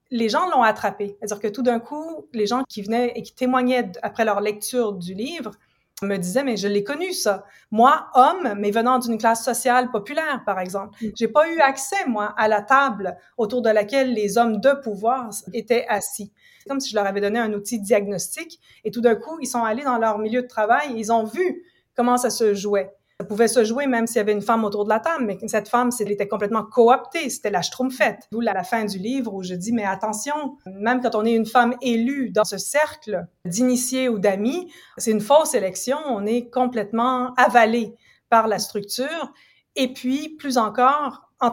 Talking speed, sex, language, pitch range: 215 wpm, female, French, 210-255 Hz